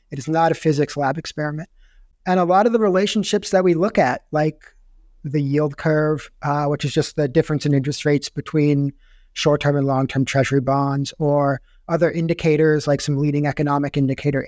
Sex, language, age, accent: male, English, 30-49, American